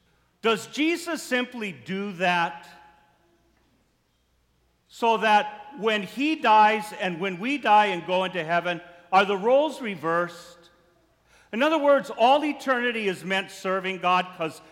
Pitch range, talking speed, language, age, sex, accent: 175-280 Hz, 130 wpm, English, 50-69, male, American